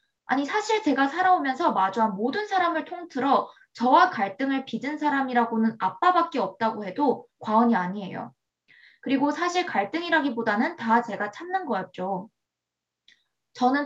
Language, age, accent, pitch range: Korean, 20-39, native, 220-320 Hz